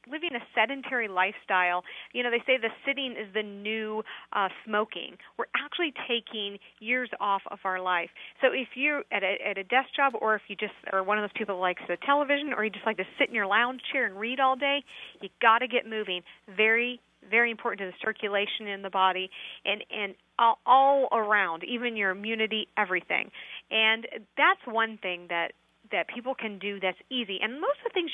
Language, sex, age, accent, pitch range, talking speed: English, female, 40-59, American, 200-260 Hz, 210 wpm